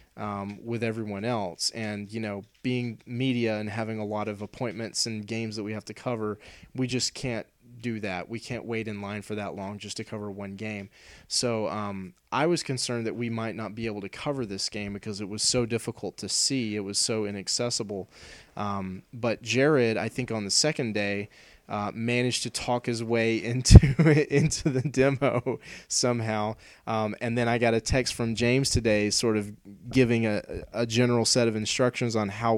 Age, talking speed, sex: 20-39, 195 wpm, male